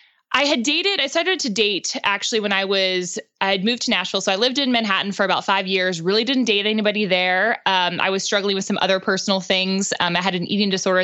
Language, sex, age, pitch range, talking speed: English, female, 20-39, 190-240 Hz, 245 wpm